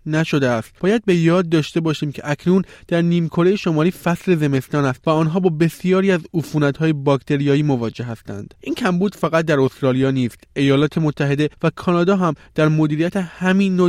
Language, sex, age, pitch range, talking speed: Persian, male, 20-39, 130-165 Hz, 170 wpm